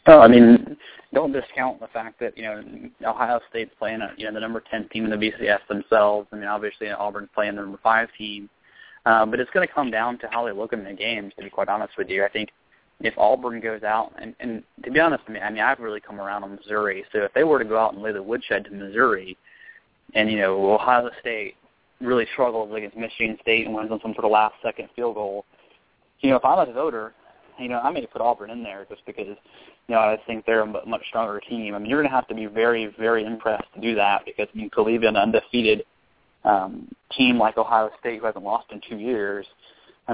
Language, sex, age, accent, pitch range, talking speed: English, male, 20-39, American, 105-120 Hz, 245 wpm